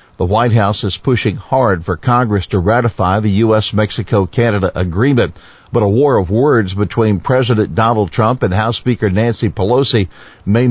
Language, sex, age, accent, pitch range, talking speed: English, male, 50-69, American, 100-125 Hz, 155 wpm